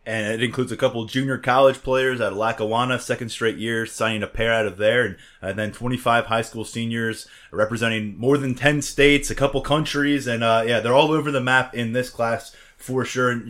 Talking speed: 220 wpm